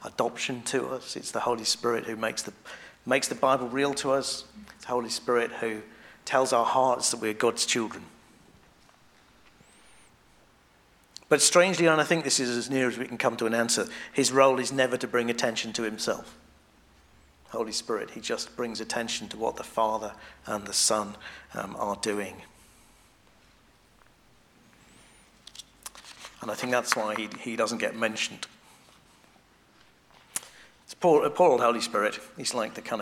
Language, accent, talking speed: English, British, 160 wpm